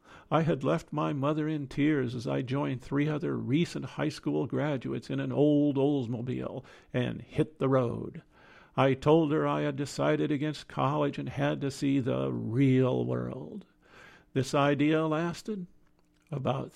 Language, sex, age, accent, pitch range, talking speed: English, male, 50-69, American, 125-145 Hz, 155 wpm